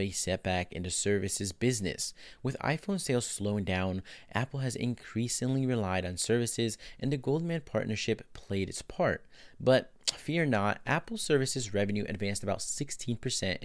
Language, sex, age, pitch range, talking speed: English, male, 30-49, 100-125 Hz, 145 wpm